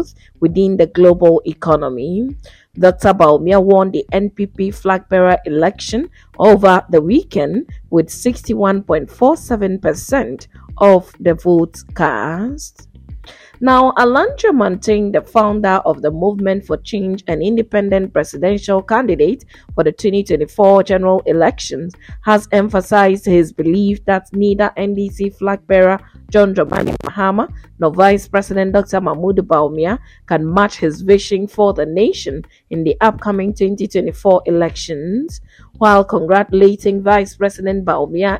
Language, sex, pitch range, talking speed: English, female, 175-205 Hz, 115 wpm